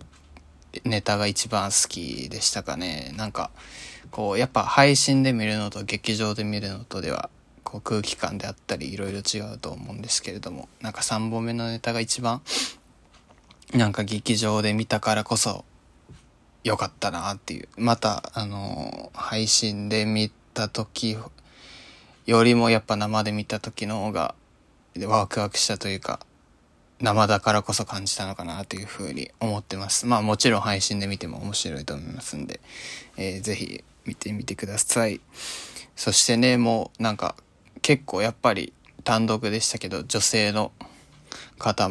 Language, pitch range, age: Japanese, 100-115 Hz, 20-39